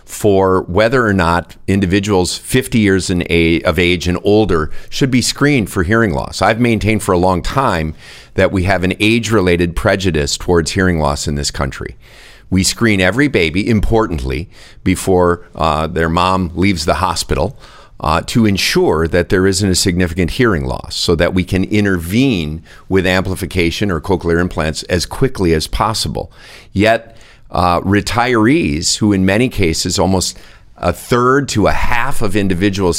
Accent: American